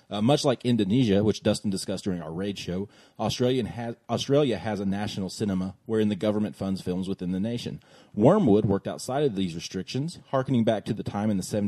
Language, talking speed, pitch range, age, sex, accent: English, 200 wpm, 95-115 Hz, 30-49, male, American